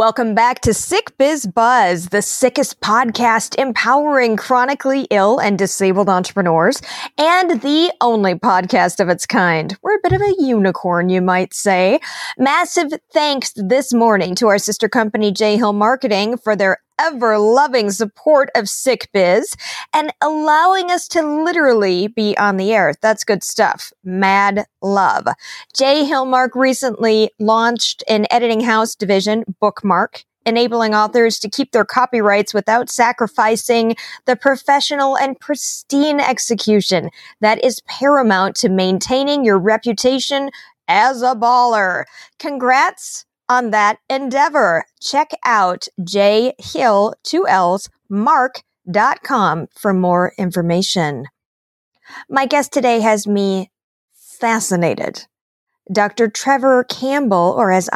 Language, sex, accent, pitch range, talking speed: English, female, American, 200-270 Hz, 120 wpm